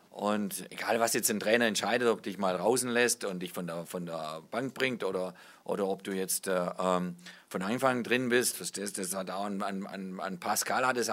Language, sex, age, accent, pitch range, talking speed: German, male, 40-59, German, 95-120 Hz, 205 wpm